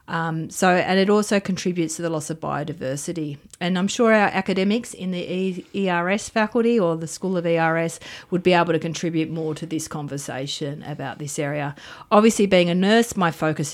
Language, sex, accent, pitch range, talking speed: English, female, Australian, 150-180 Hz, 190 wpm